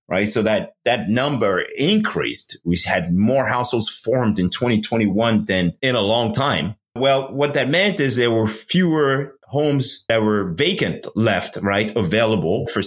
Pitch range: 110-145 Hz